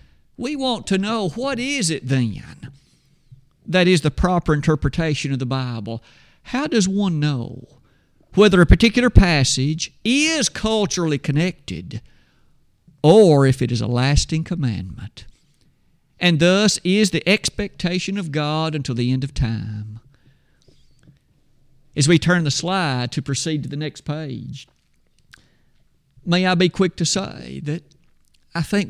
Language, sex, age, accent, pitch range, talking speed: English, male, 50-69, American, 140-195 Hz, 135 wpm